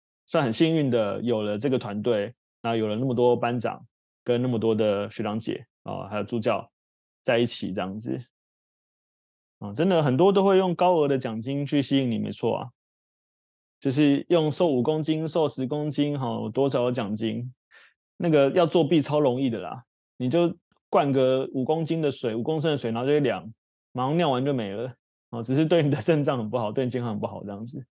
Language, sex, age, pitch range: Chinese, male, 20-39, 110-145 Hz